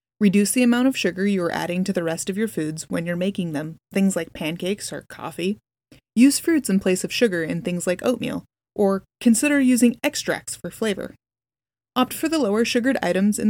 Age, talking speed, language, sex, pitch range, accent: 20-39, 205 wpm, English, female, 180-235 Hz, American